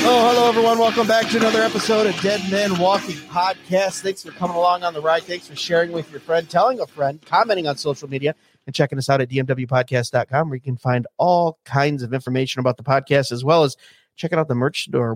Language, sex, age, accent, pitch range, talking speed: English, male, 30-49, American, 130-170 Hz, 230 wpm